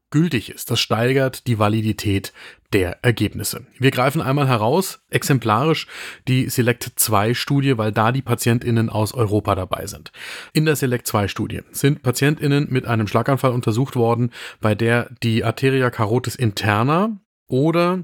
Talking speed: 135 wpm